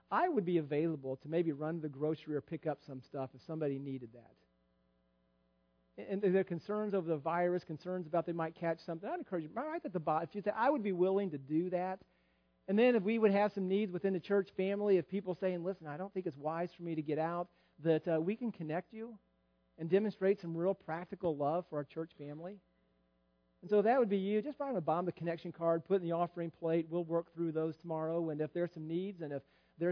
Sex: male